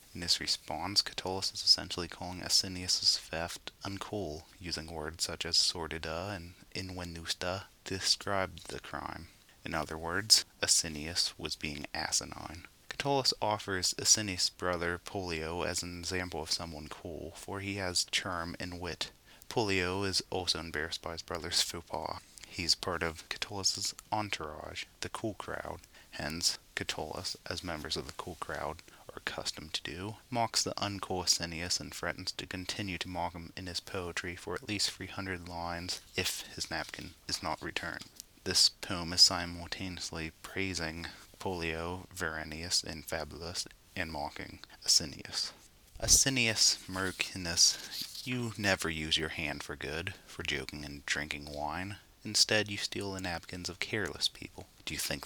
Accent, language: American, English